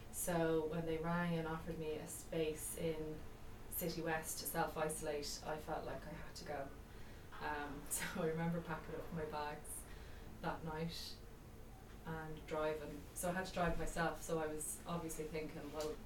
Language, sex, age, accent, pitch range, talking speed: English, female, 20-39, Irish, 155-165 Hz, 170 wpm